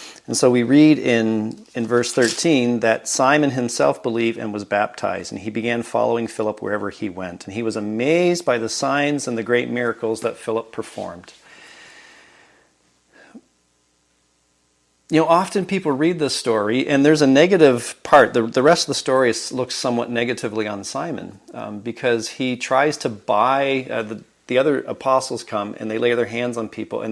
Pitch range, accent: 110-135 Hz, American